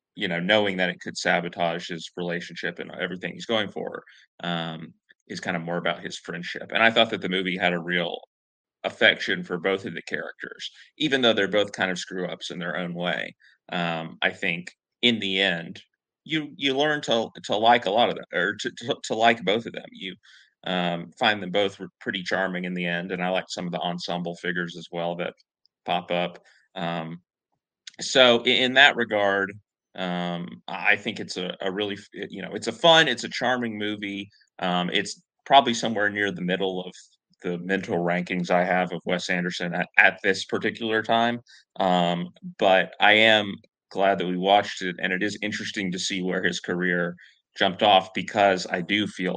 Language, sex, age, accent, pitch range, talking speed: English, male, 30-49, American, 90-105 Hz, 200 wpm